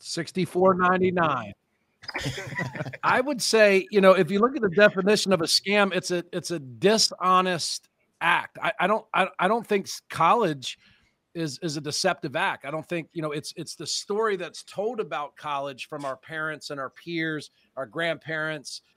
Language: English